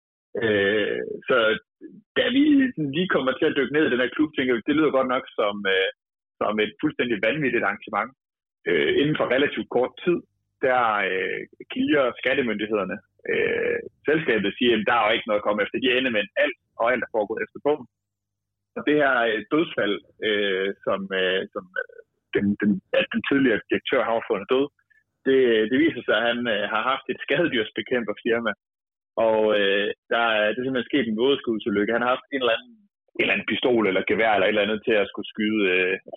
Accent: native